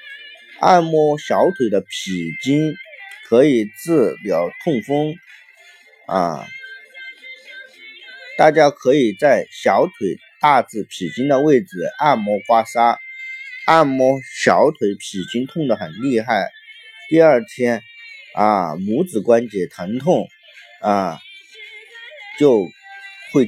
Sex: male